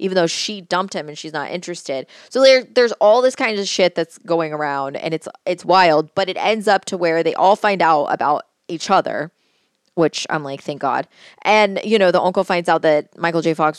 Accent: American